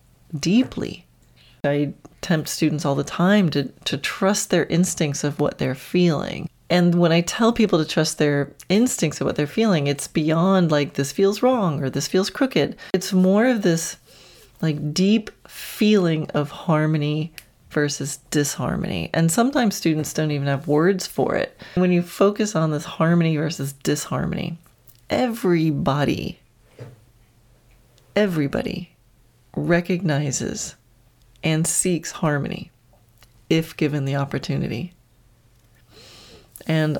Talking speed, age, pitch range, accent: 125 wpm, 30-49, 140-180 Hz, American